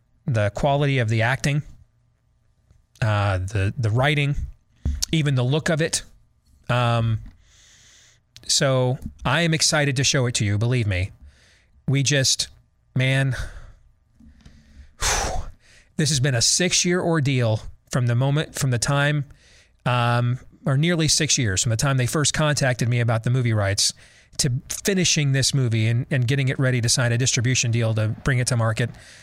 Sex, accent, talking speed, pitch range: male, American, 160 wpm, 115-145 Hz